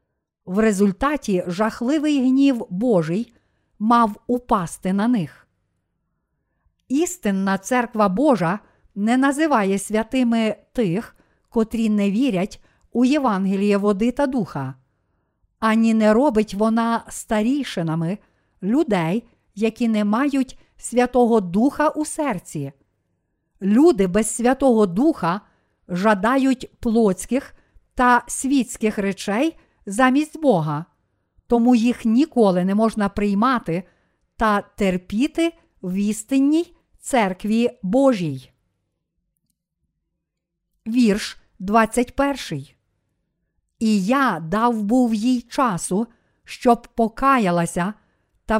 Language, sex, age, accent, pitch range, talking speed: Ukrainian, female, 50-69, native, 190-250 Hz, 90 wpm